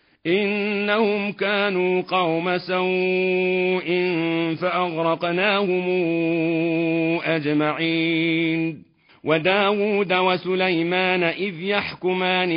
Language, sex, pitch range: Arabic, male, 165-185 Hz